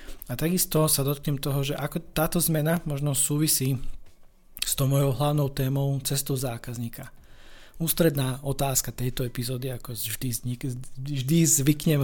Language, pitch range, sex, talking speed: Slovak, 130-150 Hz, male, 135 wpm